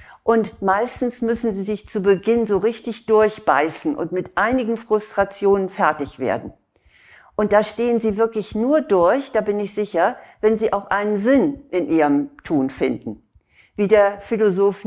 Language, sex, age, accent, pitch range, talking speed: German, female, 50-69, German, 185-220 Hz, 155 wpm